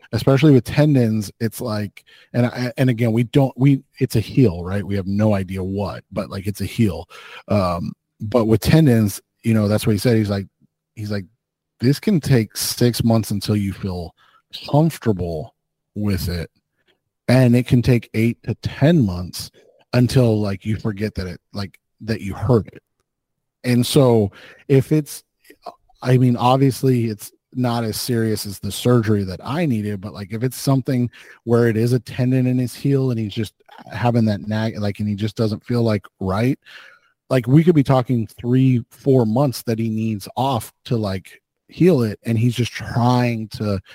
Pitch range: 105-130 Hz